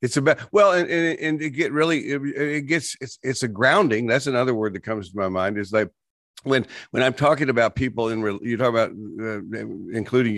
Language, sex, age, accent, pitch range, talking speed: English, male, 50-69, American, 110-130 Hz, 225 wpm